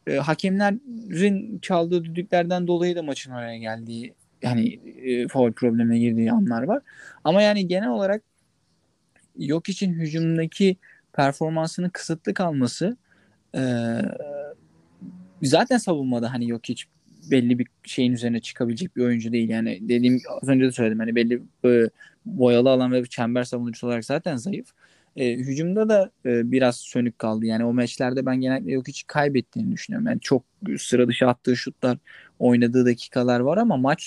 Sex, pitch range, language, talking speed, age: male, 125-175 Hz, Turkish, 145 wpm, 20-39